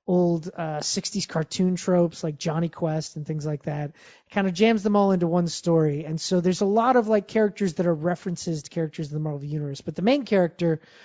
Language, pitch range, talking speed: English, 165-210 Hz, 225 wpm